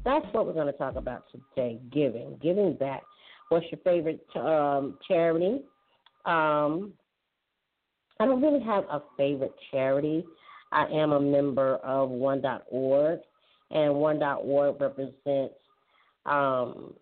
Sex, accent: female, American